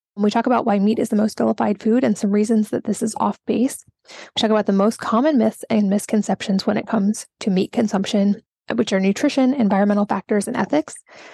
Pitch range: 205-240 Hz